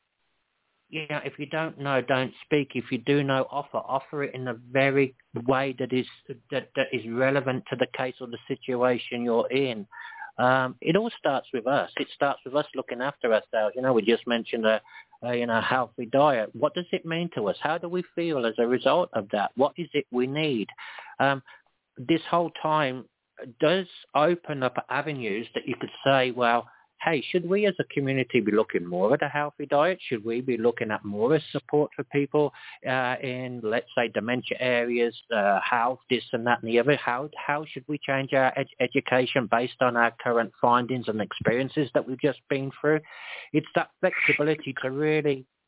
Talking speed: 200 wpm